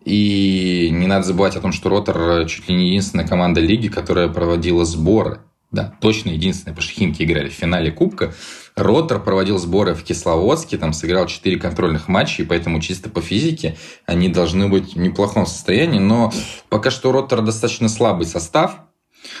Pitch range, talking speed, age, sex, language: 90-110 Hz, 165 wpm, 20-39, male, Russian